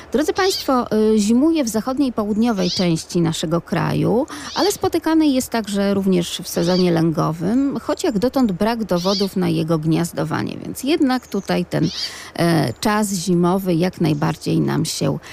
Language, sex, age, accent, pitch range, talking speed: Polish, female, 40-59, native, 175-230 Hz, 140 wpm